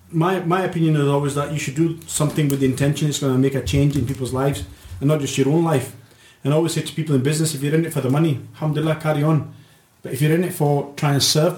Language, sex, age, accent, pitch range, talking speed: English, male, 30-49, British, 130-155 Hz, 285 wpm